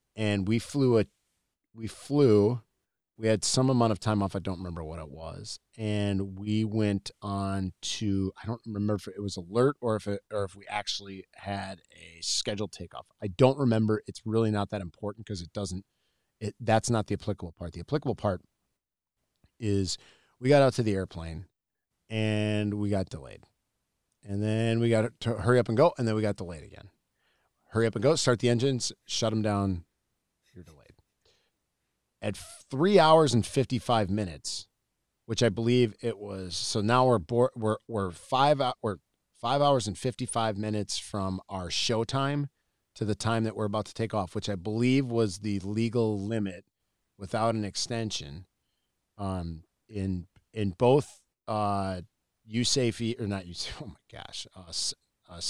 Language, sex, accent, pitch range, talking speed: English, male, American, 100-115 Hz, 175 wpm